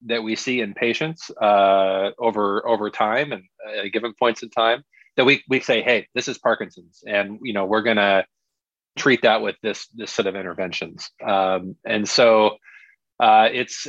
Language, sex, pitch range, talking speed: English, male, 105-125 Hz, 180 wpm